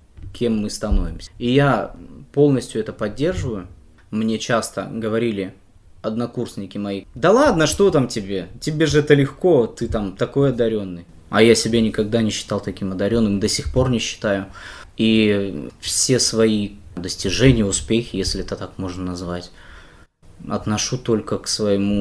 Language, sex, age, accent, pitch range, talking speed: Russian, male, 20-39, native, 95-115 Hz, 145 wpm